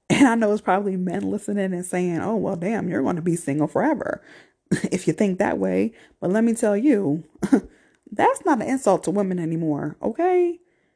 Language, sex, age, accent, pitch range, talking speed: English, female, 20-39, American, 195-310 Hz, 195 wpm